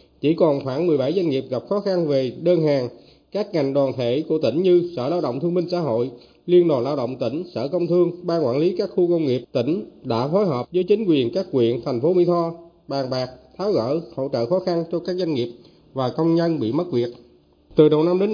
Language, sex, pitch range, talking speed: Vietnamese, male, 130-180 Hz, 250 wpm